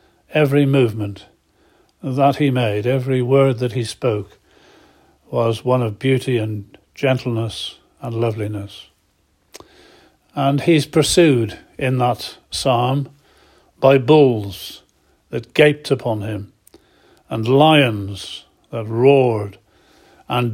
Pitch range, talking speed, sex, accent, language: 115-145 Hz, 100 wpm, male, British, English